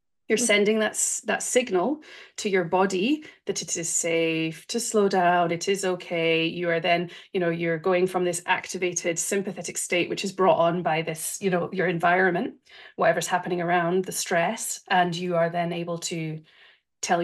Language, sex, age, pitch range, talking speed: English, female, 30-49, 170-200 Hz, 180 wpm